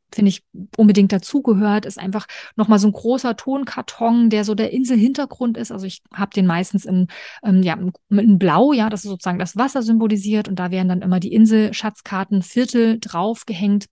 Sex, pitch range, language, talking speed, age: female, 185-225 Hz, German, 175 wpm, 30-49